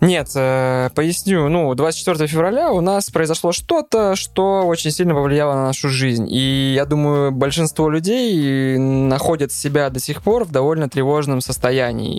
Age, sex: 20-39, male